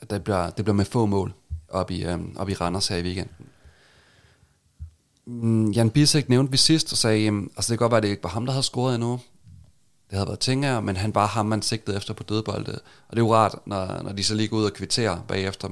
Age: 30-49